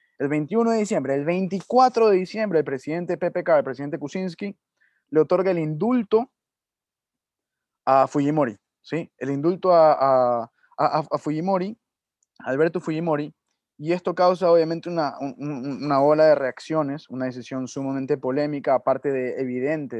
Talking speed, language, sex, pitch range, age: 140 wpm, Spanish, male, 135-170 Hz, 20-39